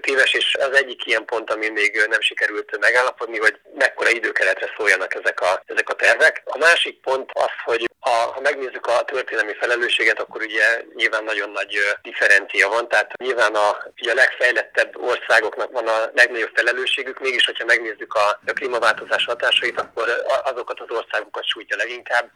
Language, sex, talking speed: Hungarian, male, 160 wpm